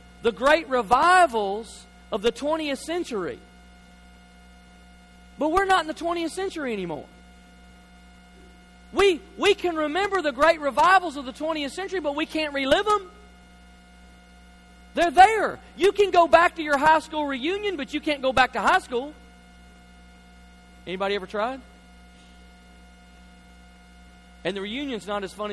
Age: 40-59